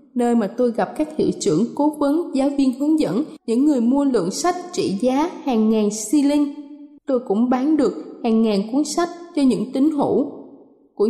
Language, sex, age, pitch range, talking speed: Vietnamese, female, 20-39, 230-285 Hz, 195 wpm